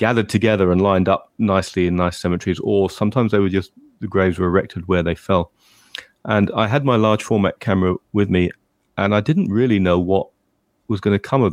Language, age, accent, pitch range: English, 30-49, British, 90-115 Hz